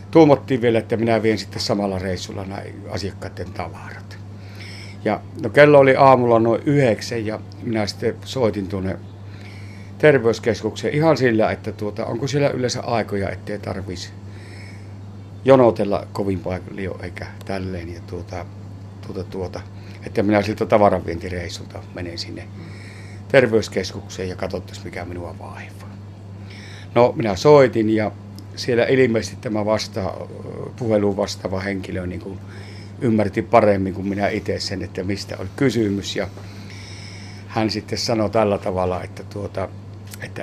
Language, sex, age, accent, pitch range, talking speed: Finnish, male, 60-79, native, 100-110 Hz, 125 wpm